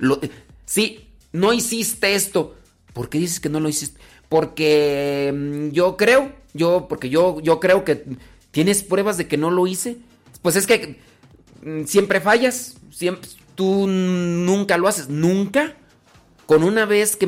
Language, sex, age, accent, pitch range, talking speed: Spanish, male, 40-59, Mexican, 130-190 Hz, 150 wpm